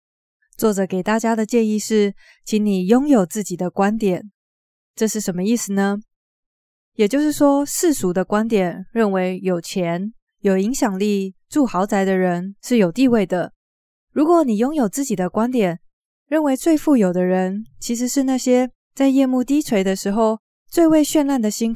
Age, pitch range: 20-39, 185-240 Hz